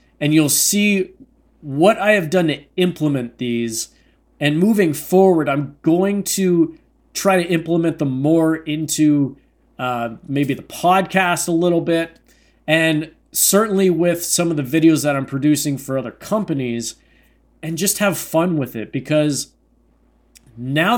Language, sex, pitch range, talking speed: English, male, 140-175 Hz, 145 wpm